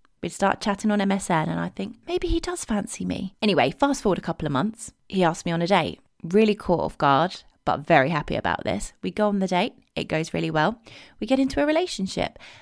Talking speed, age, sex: 235 wpm, 20-39, female